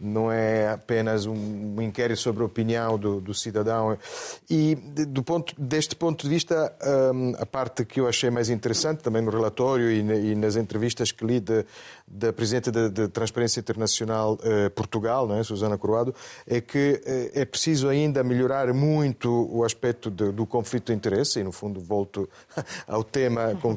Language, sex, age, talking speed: Portuguese, male, 30-49, 160 wpm